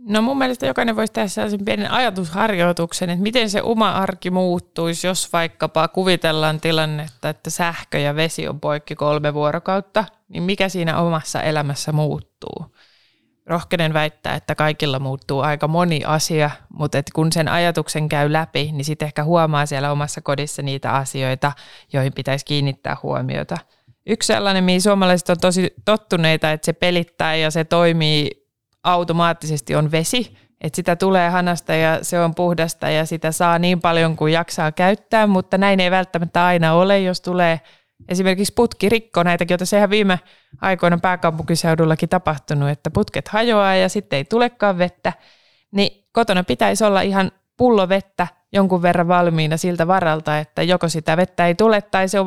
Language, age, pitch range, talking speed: Finnish, 20-39, 155-190 Hz, 155 wpm